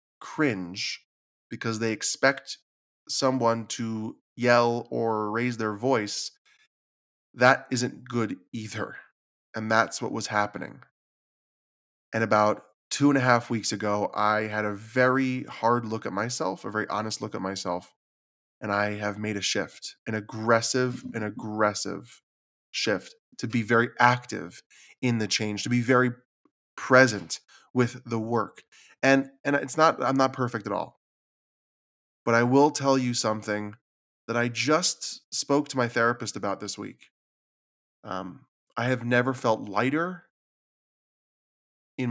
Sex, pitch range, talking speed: male, 105-135 Hz, 140 wpm